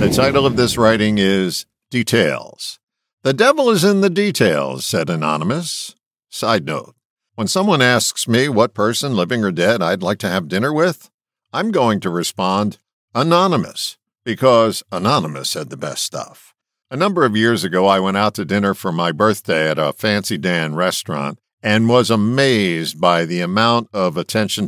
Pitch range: 95-135 Hz